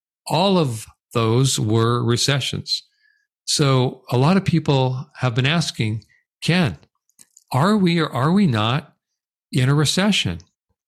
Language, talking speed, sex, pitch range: English, 125 wpm, male, 120-155 Hz